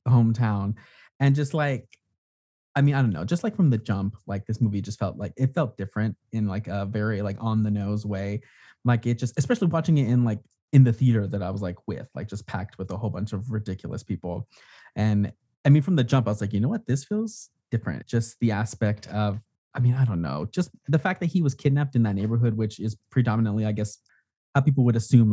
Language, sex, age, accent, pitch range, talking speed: English, male, 20-39, American, 105-135 Hz, 240 wpm